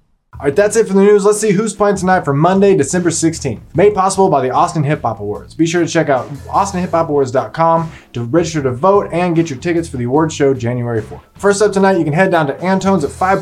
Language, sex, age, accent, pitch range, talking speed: English, male, 20-39, American, 140-185 Hz, 245 wpm